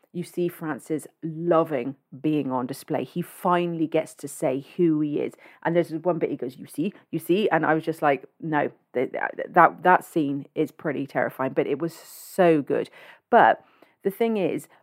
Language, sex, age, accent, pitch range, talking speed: English, female, 40-59, British, 160-215 Hz, 185 wpm